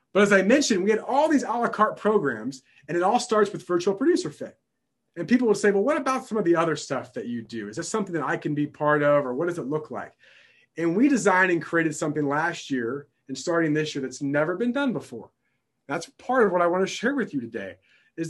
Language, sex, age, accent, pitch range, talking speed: English, male, 30-49, American, 150-200 Hz, 255 wpm